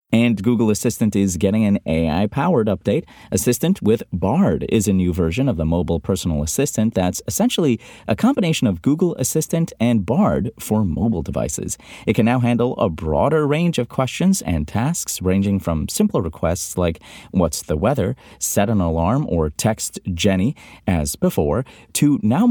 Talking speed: 165 wpm